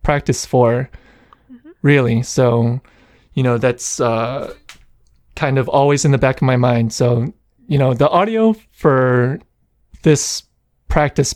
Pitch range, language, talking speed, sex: 125-150 Hz, English, 130 wpm, male